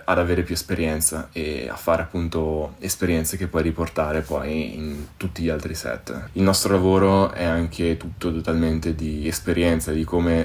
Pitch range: 80-90 Hz